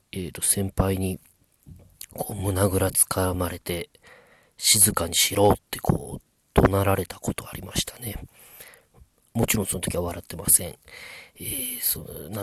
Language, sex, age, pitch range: Japanese, male, 40-59, 90-120 Hz